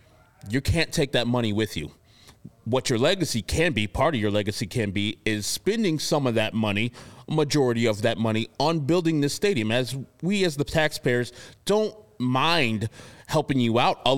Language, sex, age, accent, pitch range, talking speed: English, male, 30-49, American, 115-165 Hz, 185 wpm